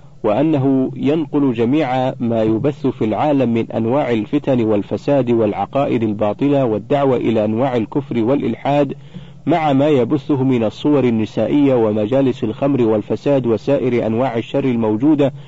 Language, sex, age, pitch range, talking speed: Arabic, male, 40-59, 120-150 Hz, 120 wpm